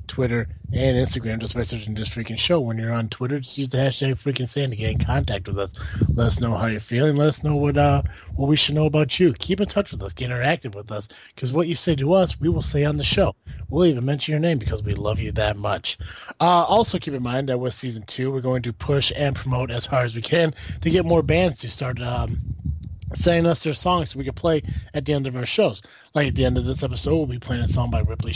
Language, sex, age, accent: English, male, 30-49, American